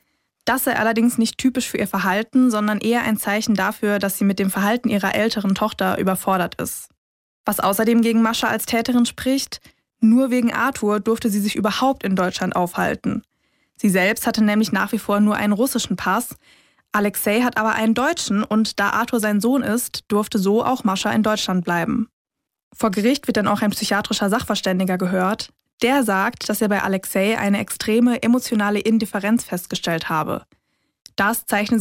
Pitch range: 195-230 Hz